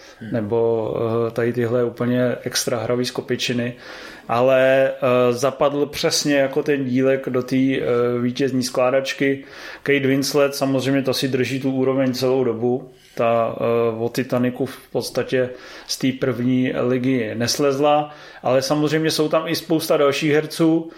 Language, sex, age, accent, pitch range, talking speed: Czech, male, 30-49, native, 130-150 Hz, 130 wpm